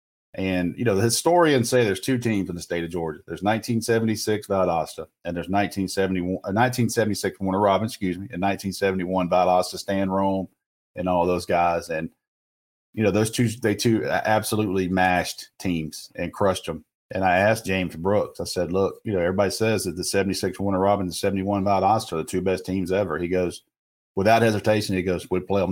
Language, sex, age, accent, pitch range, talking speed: English, male, 40-59, American, 90-110 Hz, 190 wpm